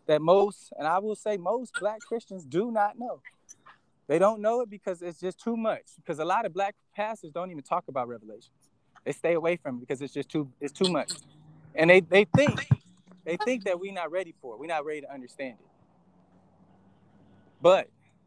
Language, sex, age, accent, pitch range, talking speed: English, male, 20-39, American, 150-200 Hz, 205 wpm